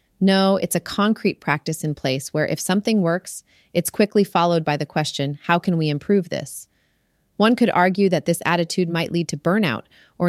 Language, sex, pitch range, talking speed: English, female, 155-190 Hz, 190 wpm